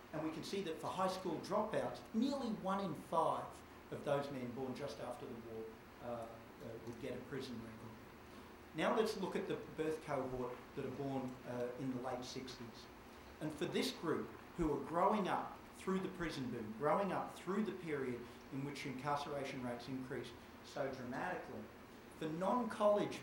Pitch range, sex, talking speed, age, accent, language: 120-140 Hz, male, 180 wpm, 40-59, Australian, English